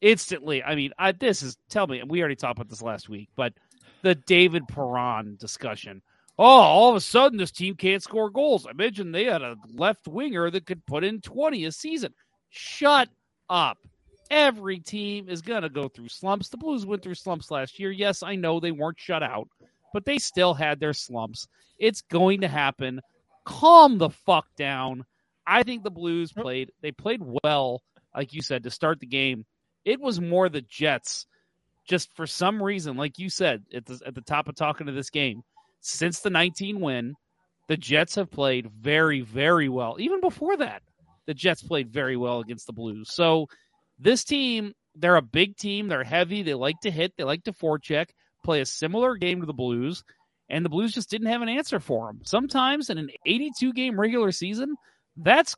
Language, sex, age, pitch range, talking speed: English, male, 40-59, 140-205 Hz, 195 wpm